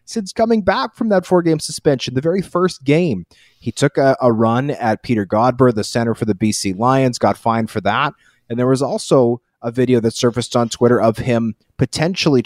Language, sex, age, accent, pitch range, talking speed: English, male, 30-49, American, 105-130 Hz, 200 wpm